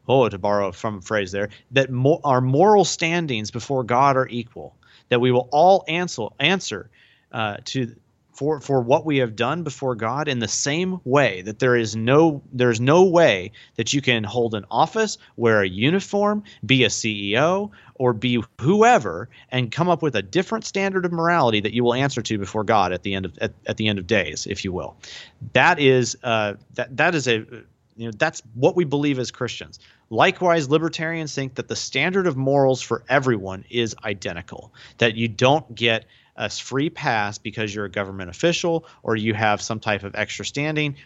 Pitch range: 110-145 Hz